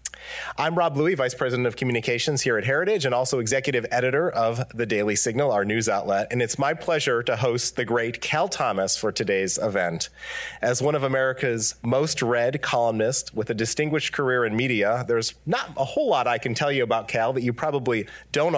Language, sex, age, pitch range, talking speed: English, male, 30-49, 120-155 Hz, 200 wpm